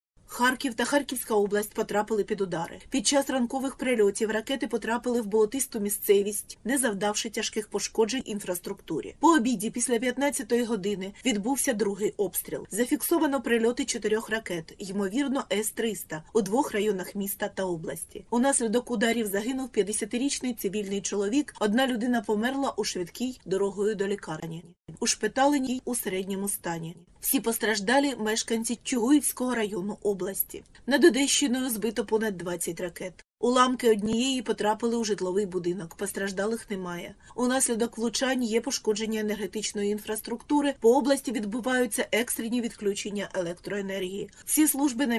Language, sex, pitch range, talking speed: Ukrainian, female, 200-250 Hz, 125 wpm